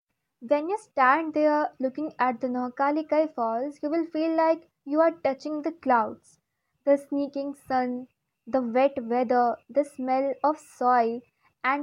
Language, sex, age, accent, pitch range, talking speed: English, female, 20-39, Indian, 245-295 Hz, 145 wpm